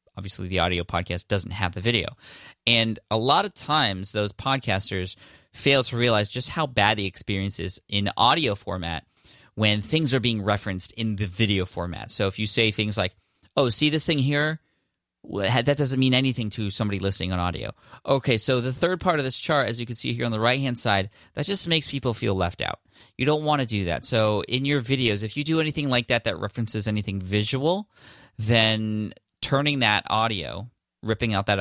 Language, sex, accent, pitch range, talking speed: English, male, American, 95-120 Hz, 205 wpm